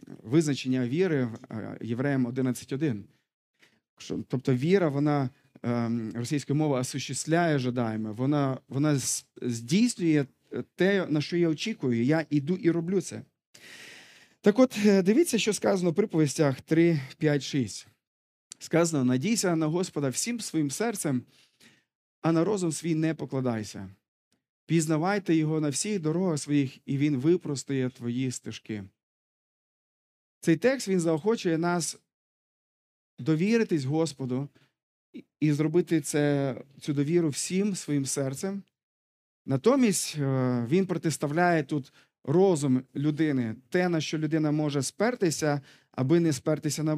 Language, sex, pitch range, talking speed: Ukrainian, male, 130-170 Hz, 110 wpm